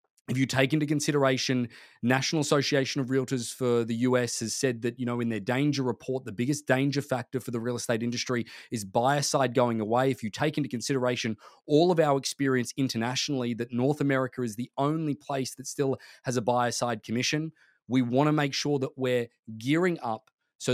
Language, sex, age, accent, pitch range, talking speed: English, male, 20-39, Australian, 120-140 Hz, 200 wpm